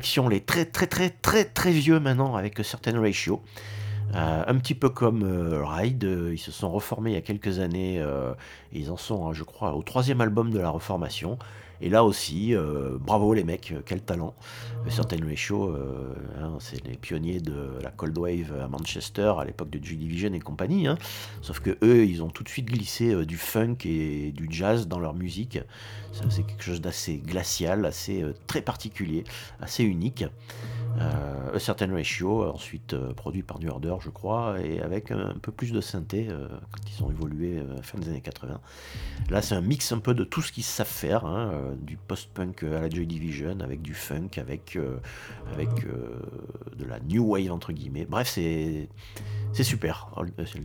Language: French